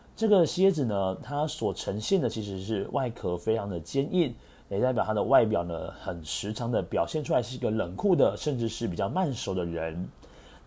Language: Chinese